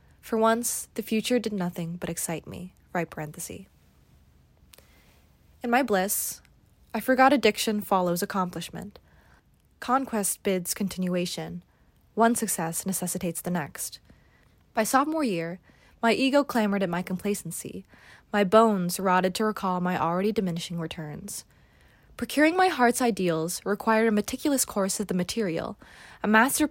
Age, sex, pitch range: 20-39, female, 175-225 Hz